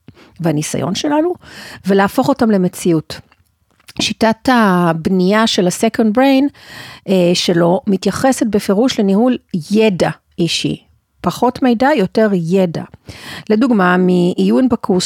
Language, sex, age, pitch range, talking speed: Hebrew, female, 40-59, 175-235 Hz, 90 wpm